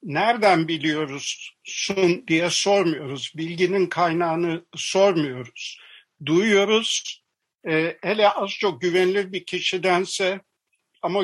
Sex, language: male, Turkish